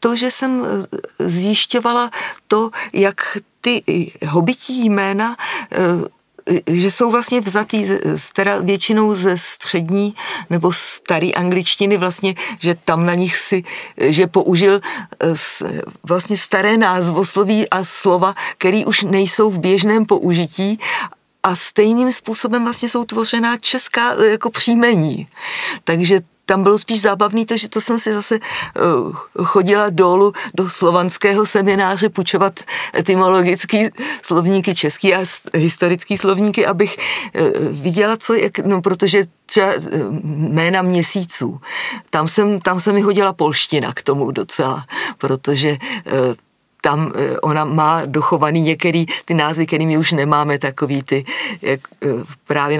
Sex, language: female, Czech